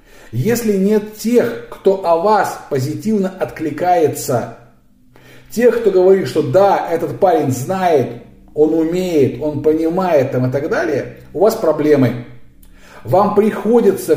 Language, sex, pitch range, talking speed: Russian, male, 130-180 Hz, 125 wpm